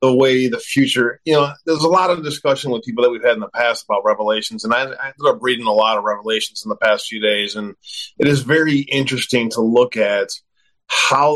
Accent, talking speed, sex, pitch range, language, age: American, 240 wpm, male, 110-140 Hz, English, 30-49